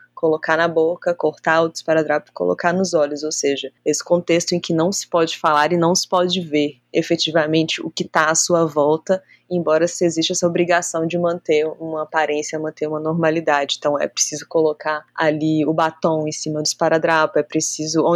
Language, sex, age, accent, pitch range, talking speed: Portuguese, female, 20-39, Brazilian, 155-175 Hz, 190 wpm